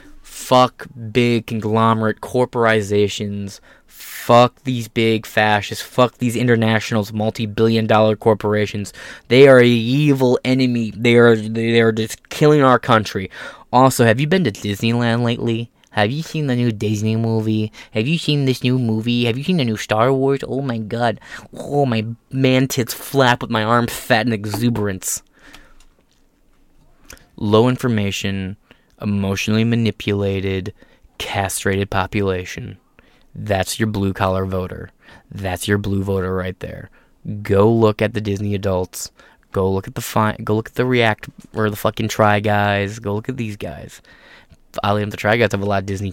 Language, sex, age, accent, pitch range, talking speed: English, male, 20-39, American, 100-120 Hz, 155 wpm